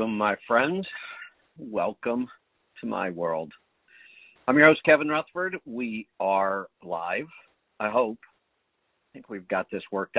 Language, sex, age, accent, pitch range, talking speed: English, male, 50-69, American, 100-125 Hz, 135 wpm